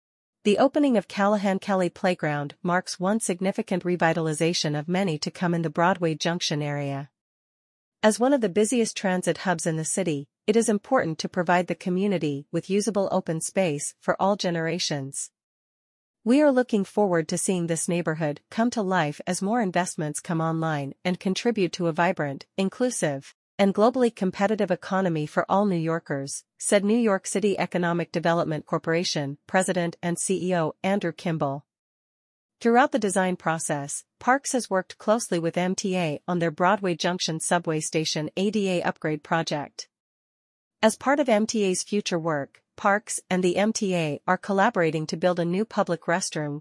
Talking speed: 155 wpm